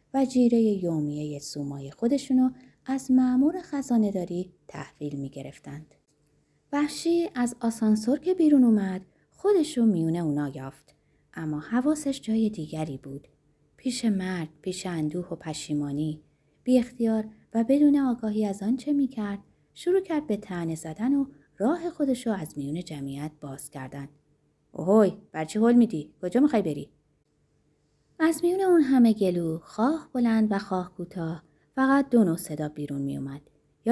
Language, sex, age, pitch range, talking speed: Persian, female, 30-49, 155-255 Hz, 145 wpm